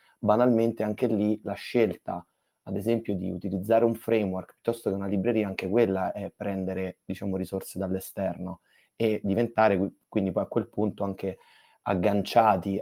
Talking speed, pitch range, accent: 145 wpm, 95-110 Hz, native